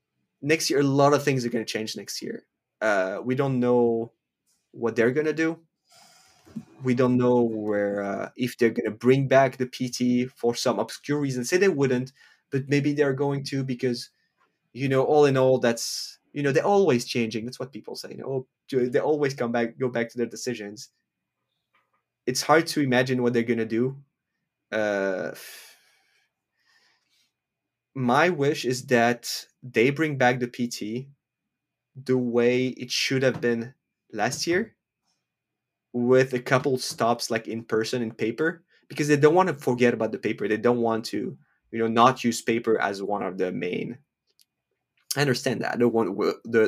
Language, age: English, 20-39